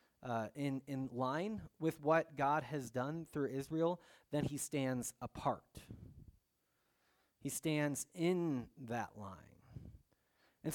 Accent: American